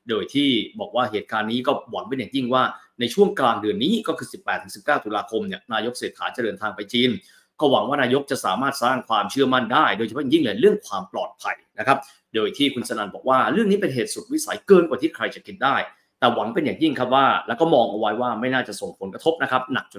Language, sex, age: Thai, male, 30-49